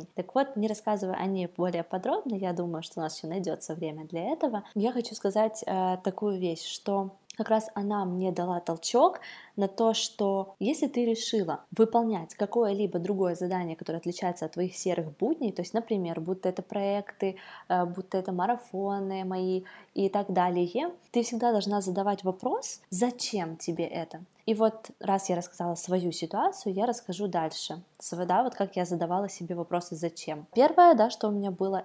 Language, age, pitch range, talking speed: Russian, 20-39, 170-215 Hz, 175 wpm